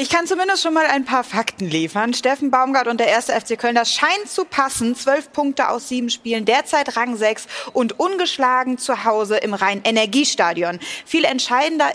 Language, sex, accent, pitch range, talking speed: German, female, German, 220-285 Hz, 175 wpm